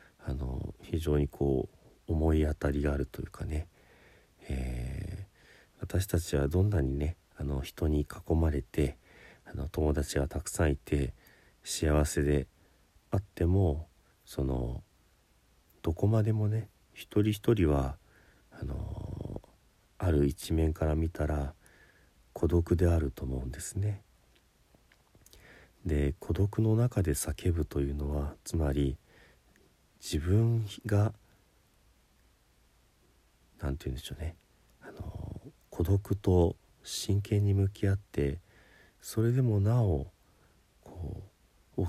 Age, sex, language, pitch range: 40-59, male, Japanese, 70-100 Hz